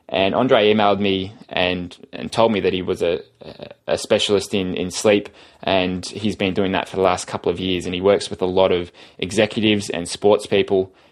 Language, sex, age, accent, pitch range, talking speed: English, male, 20-39, Australian, 90-105 Hz, 210 wpm